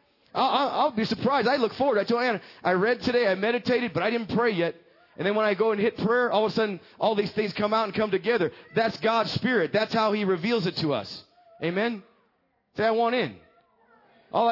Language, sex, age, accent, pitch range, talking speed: English, male, 30-49, American, 165-230 Hz, 225 wpm